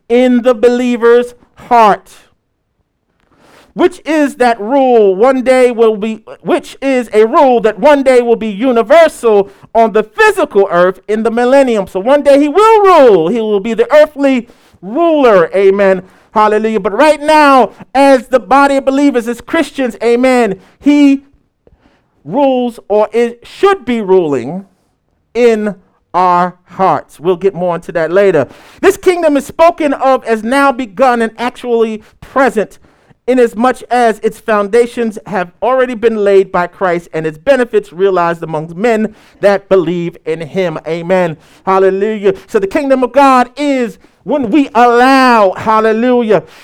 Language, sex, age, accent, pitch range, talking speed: English, male, 50-69, American, 205-270 Hz, 145 wpm